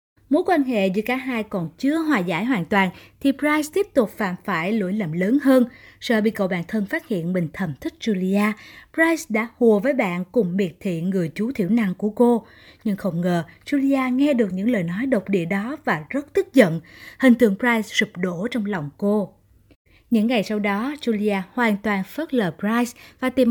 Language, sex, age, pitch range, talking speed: Vietnamese, female, 20-39, 190-260 Hz, 210 wpm